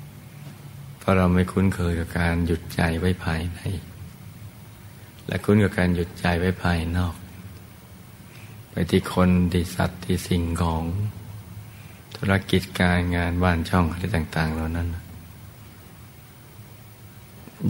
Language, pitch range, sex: Thai, 90-105 Hz, male